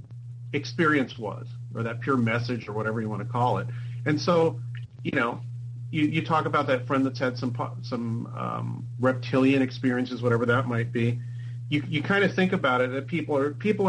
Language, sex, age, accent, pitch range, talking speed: English, male, 40-59, American, 120-140 Hz, 195 wpm